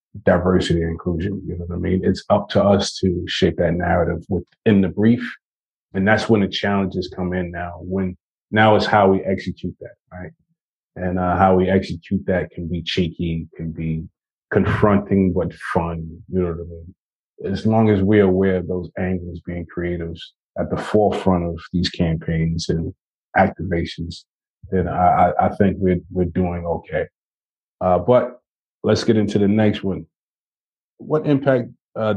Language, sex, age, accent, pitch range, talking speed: English, male, 30-49, American, 85-100 Hz, 170 wpm